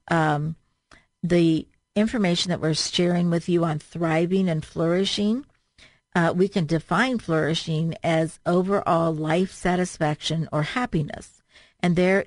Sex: female